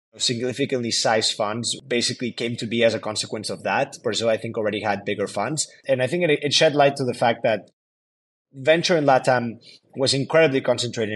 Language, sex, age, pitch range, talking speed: English, male, 20-39, 110-125 Hz, 190 wpm